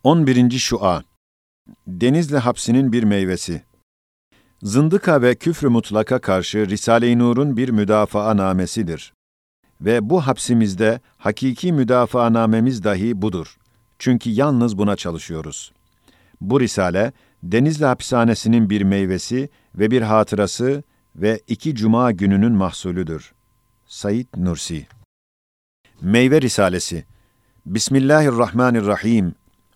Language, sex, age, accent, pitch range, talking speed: Turkish, male, 50-69, native, 105-130 Hz, 95 wpm